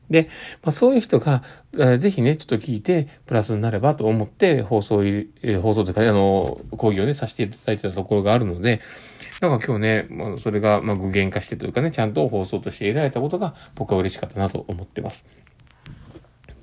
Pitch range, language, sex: 110-160 Hz, Japanese, male